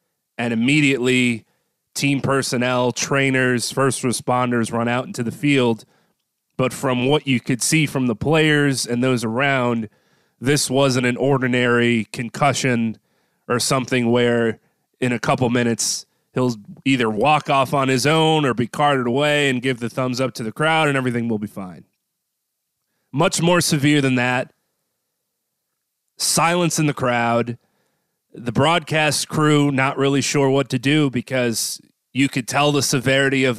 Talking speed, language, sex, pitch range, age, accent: 150 wpm, English, male, 120-140 Hz, 30-49, American